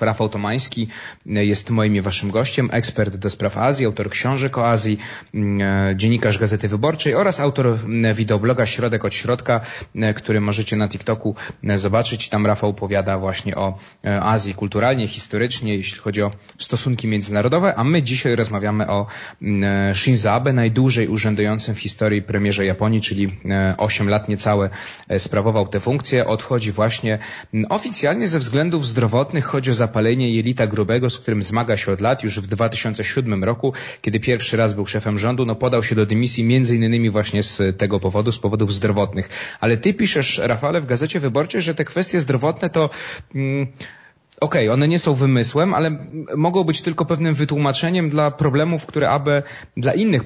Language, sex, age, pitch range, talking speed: Polish, male, 30-49, 105-140 Hz, 160 wpm